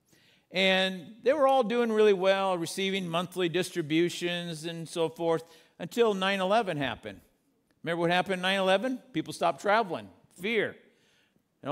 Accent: American